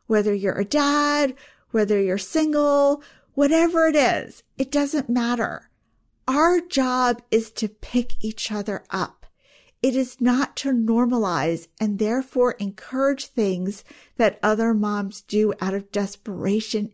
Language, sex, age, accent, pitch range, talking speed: English, female, 40-59, American, 195-255 Hz, 130 wpm